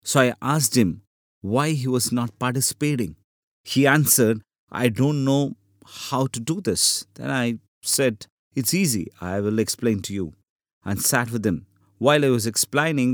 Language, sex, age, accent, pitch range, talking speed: English, male, 50-69, Indian, 110-140 Hz, 165 wpm